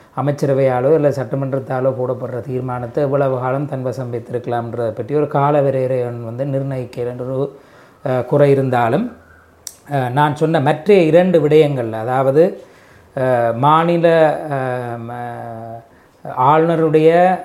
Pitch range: 125-155 Hz